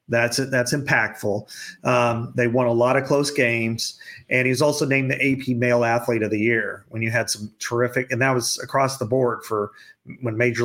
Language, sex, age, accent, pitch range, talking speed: English, male, 40-59, American, 115-135 Hz, 210 wpm